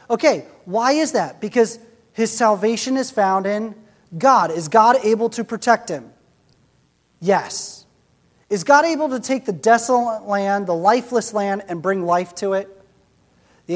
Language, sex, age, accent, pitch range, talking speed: English, male, 30-49, American, 170-225 Hz, 155 wpm